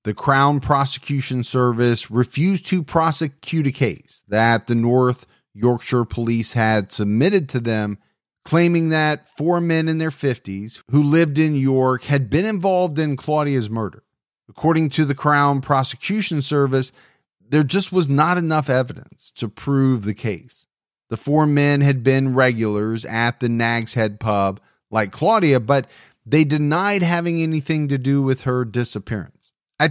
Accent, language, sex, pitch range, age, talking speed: American, English, male, 120-155 Hz, 40-59, 150 wpm